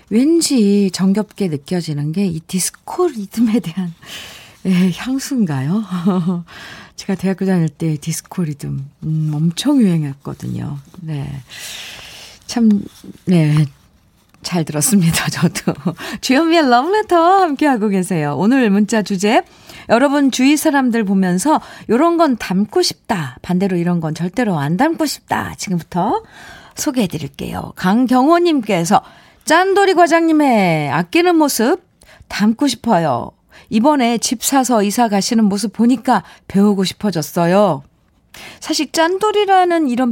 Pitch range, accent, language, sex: 170-240 Hz, native, Korean, female